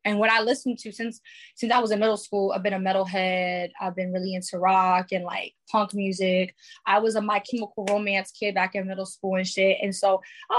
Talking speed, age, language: 230 wpm, 20-39, English